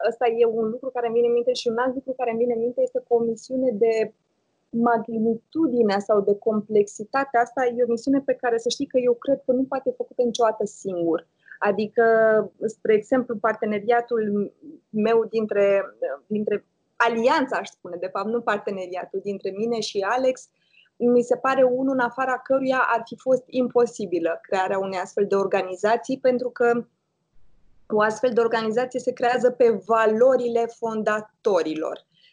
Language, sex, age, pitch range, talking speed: Romanian, female, 20-39, 205-245 Hz, 165 wpm